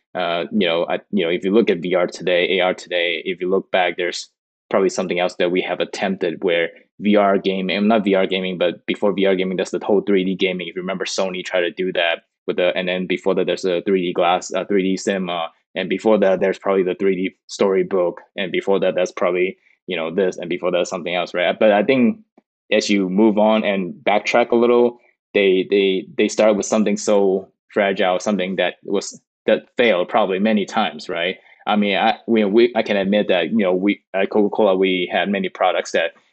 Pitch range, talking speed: 90-105 Hz, 220 wpm